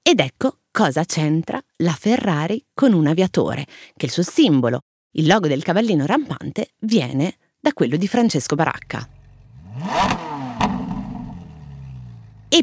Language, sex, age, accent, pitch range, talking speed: Italian, female, 30-49, native, 140-210 Hz, 120 wpm